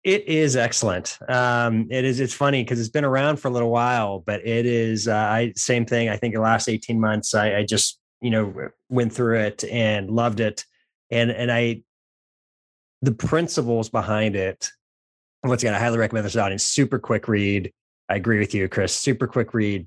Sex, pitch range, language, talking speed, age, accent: male, 105-125 Hz, English, 195 wpm, 30-49, American